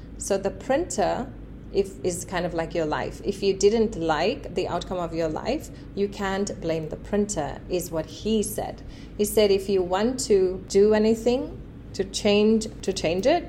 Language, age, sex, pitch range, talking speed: English, 30-49, female, 175-215 Hz, 180 wpm